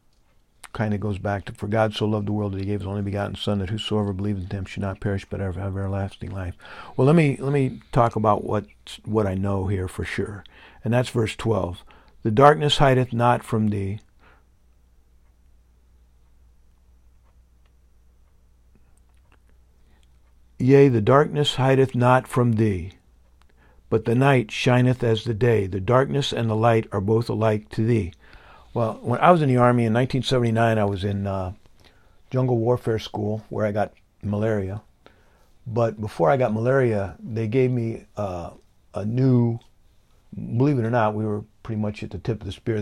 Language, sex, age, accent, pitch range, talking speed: English, male, 60-79, American, 90-115 Hz, 170 wpm